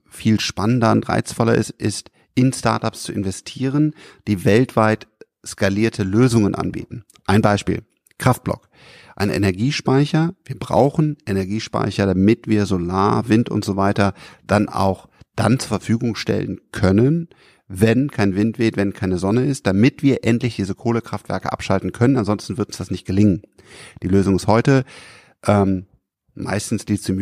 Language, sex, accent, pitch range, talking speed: German, male, German, 100-125 Hz, 145 wpm